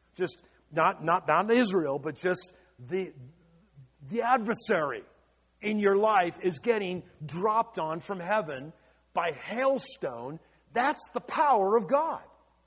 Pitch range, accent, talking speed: 150-215 Hz, American, 125 wpm